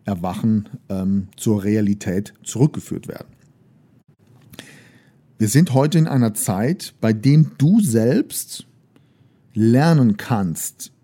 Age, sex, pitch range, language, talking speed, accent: 50-69, male, 105-135 Hz, German, 100 wpm, German